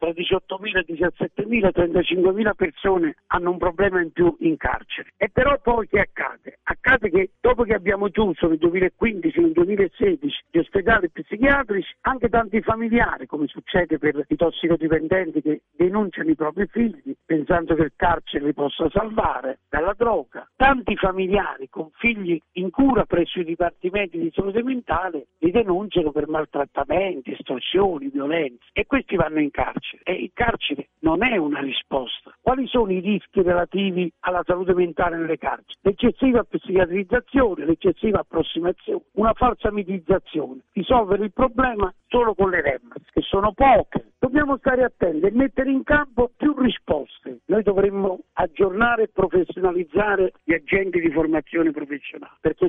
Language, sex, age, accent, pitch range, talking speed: Italian, male, 60-79, native, 170-235 Hz, 150 wpm